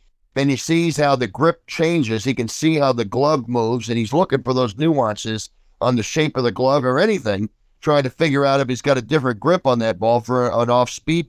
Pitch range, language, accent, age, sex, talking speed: 125-160 Hz, English, American, 50-69, male, 235 wpm